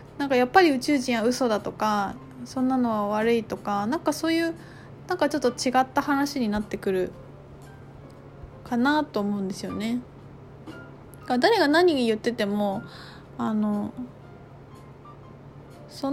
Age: 20-39